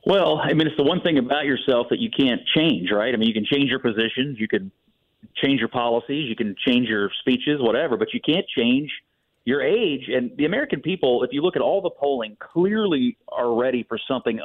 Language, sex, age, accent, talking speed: English, male, 40-59, American, 225 wpm